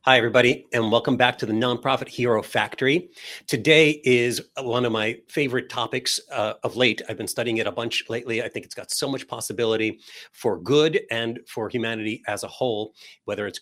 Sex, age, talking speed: male, 40-59, 195 wpm